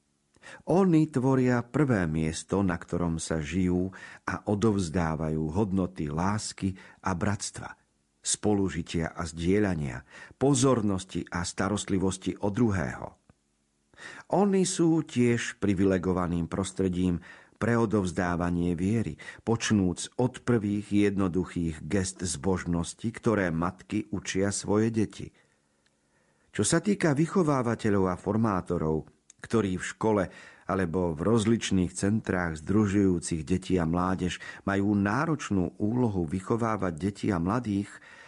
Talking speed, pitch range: 100 wpm, 85-115 Hz